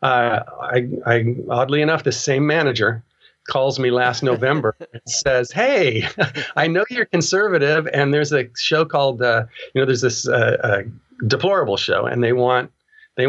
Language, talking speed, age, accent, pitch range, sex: English, 165 wpm, 40-59, American, 120-155 Hz, male